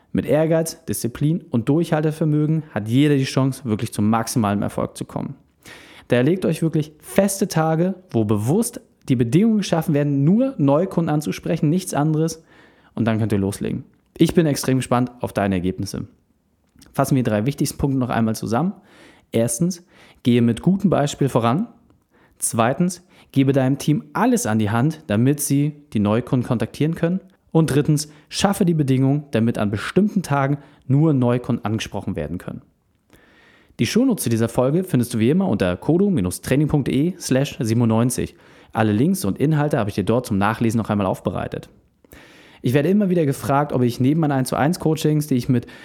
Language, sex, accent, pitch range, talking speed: German, male, German, 120-165 Hz, 160 wpm